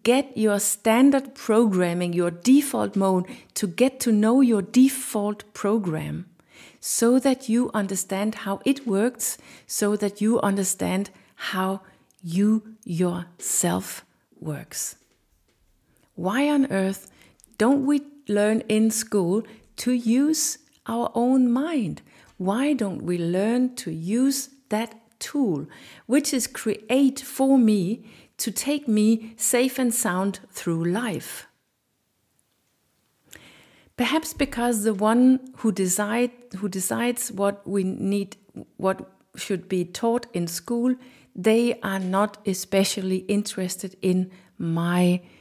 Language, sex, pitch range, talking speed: English, female, 190-245 Hz, 115 wpm